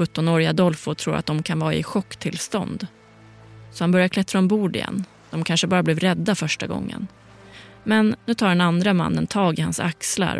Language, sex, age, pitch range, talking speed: Swedish, female, 30-49, 150-180 Hz, 185 wpm